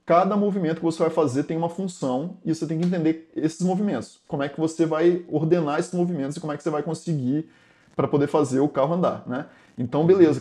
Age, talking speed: 20-39, 230 wpm